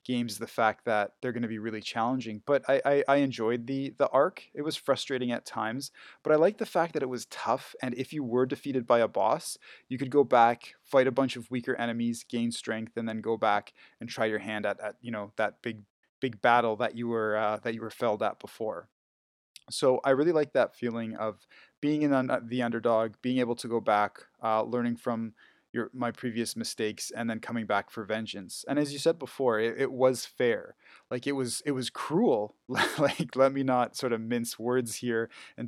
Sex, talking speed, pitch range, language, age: male, 220 wpm, 110-130 Hz, English, 20-39